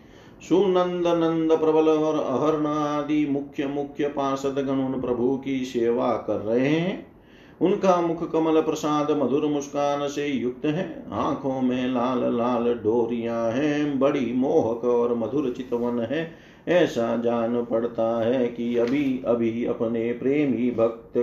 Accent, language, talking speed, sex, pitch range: native, Hindi, 135 wpm, male, 120-150 Hz